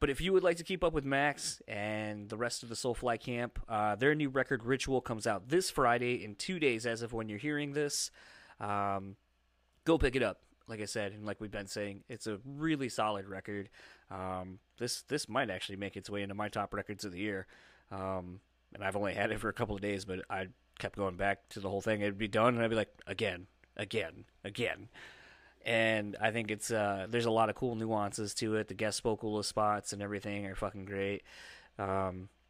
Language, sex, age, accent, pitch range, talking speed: English, male, 20-39, American, 100-120 Hz, 225 wpm